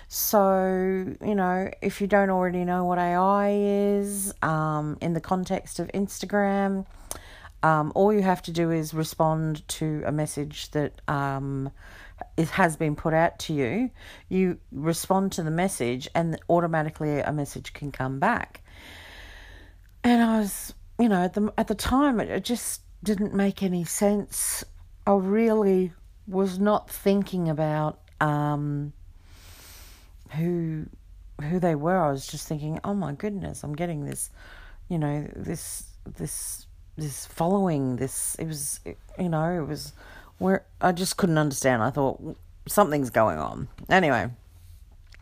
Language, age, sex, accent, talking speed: English, 50-69, female, Australian, 150 wpm